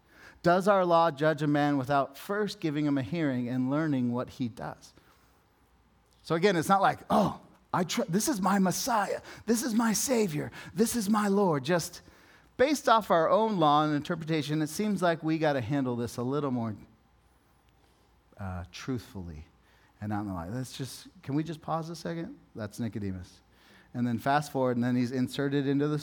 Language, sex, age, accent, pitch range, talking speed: English, male, 30-49, American, 115-165 Hz, 190 wpm